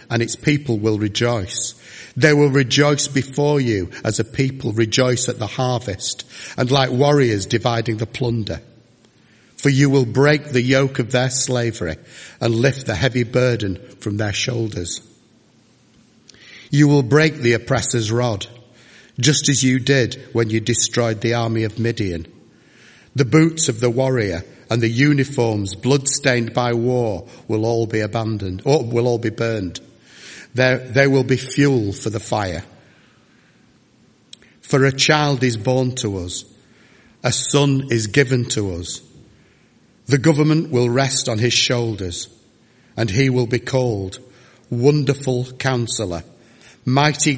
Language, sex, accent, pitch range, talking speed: English, male, British, 115-140 Hz, 145 wpm